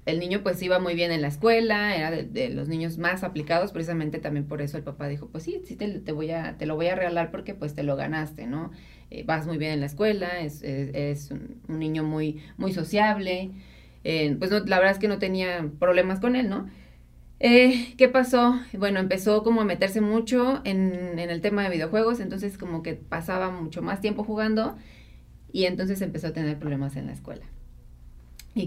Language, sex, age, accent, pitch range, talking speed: Spanish, female, 30-49, Mexican, 150-195 Hz, 215 wpm